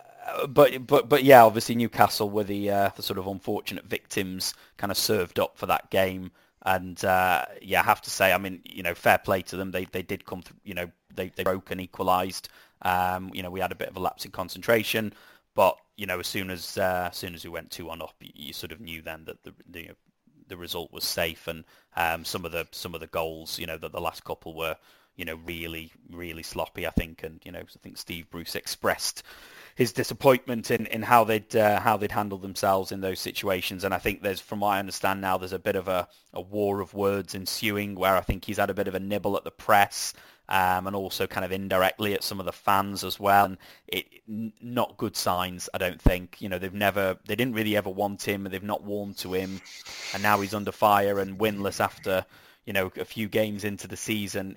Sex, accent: male, British